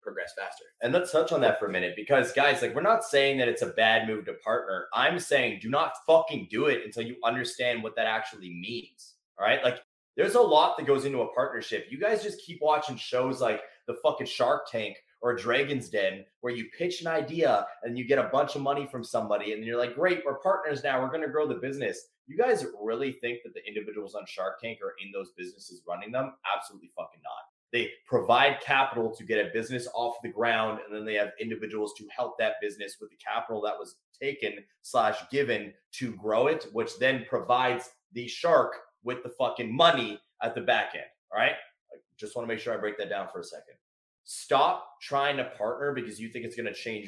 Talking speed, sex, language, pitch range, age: 225 wpm, male, English, 115-170 Hz, 20-39